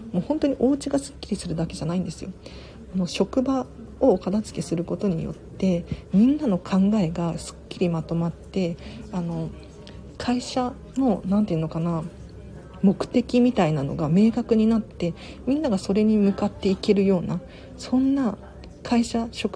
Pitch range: 170-220 Hz